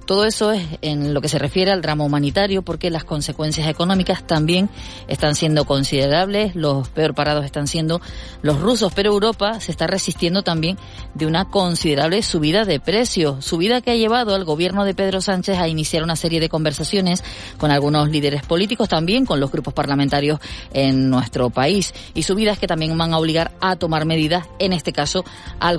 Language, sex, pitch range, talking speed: Spanish, female, 145-180 Hz, 185 wpm